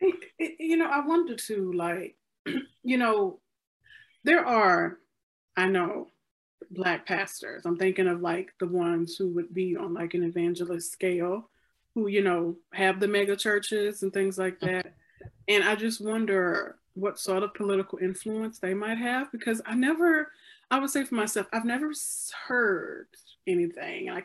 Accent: American